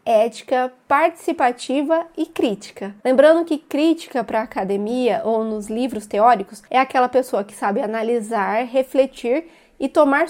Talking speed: 130 wpm